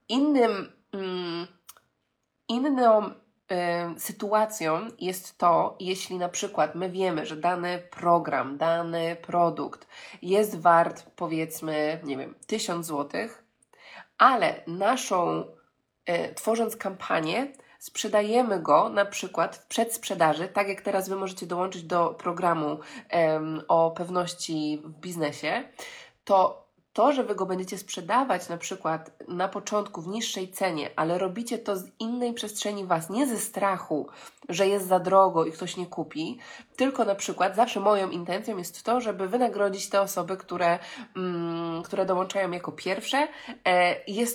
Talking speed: 130 wpm